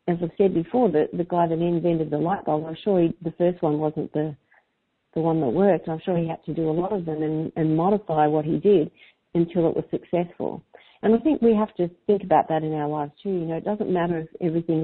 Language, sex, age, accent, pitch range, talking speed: English, female, 50-69, Australian, 160-195 Hz, 260 wpm